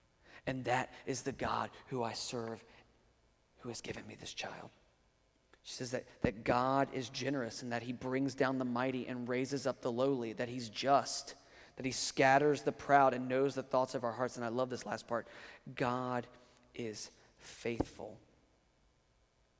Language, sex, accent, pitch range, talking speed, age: English, male, American, 115-135 Hz, 175 wpm, 30-49